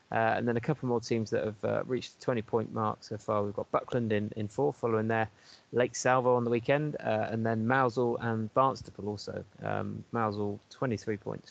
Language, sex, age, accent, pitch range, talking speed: English, male, 20-39, British, 105-125 Hz, 210 wpm